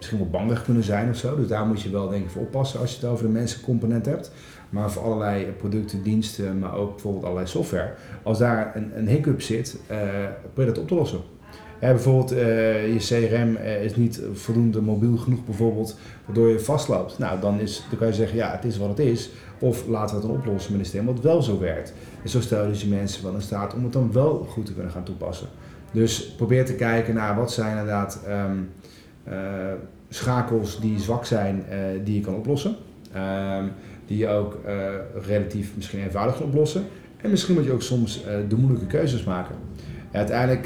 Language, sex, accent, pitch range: Dutch, male, Dutch, 100-120 Hz